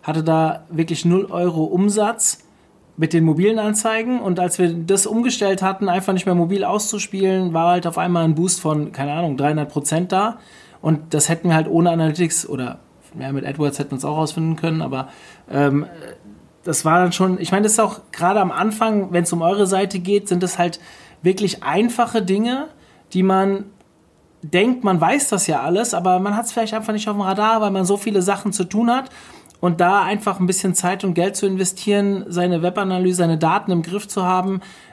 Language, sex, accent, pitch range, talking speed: German, male, German, 160-195 Hz, 205 wpm